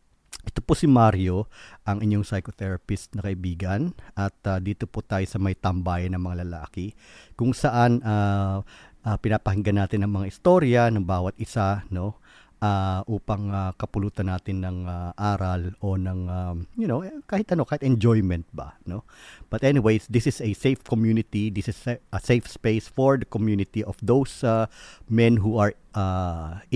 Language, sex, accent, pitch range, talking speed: Filipino, male, native, 95-110 Hz, 165 wpm